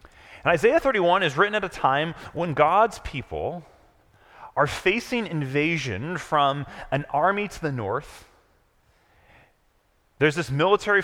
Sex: male